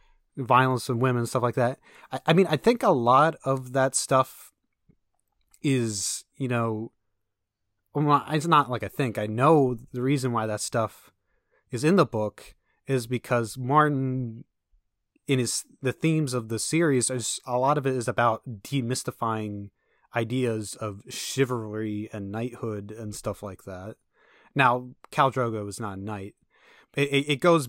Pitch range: 110-135 Hz